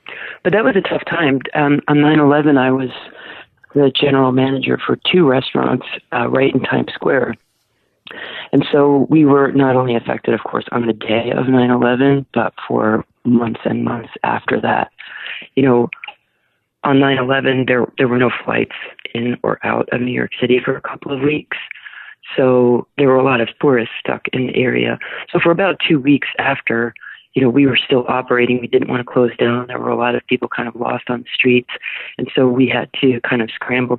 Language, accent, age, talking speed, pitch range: English, American, 40-59, 200 wpm, 125-140 Hz